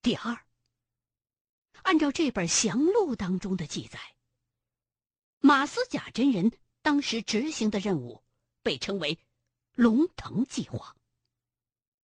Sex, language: female, Chinese